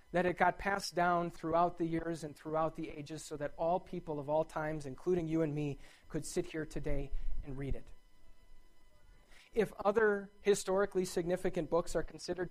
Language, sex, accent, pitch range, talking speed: English, male, American, 145-185 Hz, 175 wpm